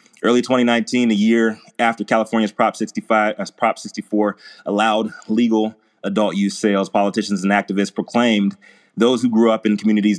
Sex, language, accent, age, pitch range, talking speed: male, English, American, 30-49, 100-110 Hz, 155 wpm